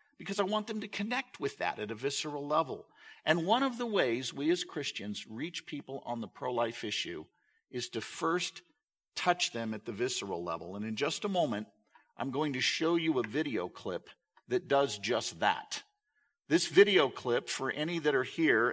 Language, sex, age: English, male, 50-69